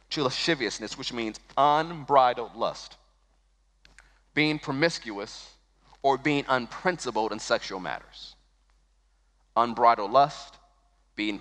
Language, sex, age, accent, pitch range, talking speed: English, male, 30-49, American, 105-155 Hz, 90 wpm